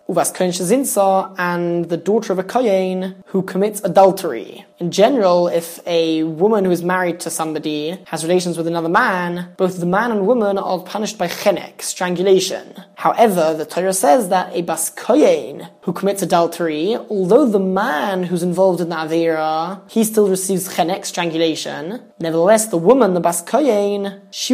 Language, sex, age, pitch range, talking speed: English, male, 20-39, 175-205 Hz, 150 wpm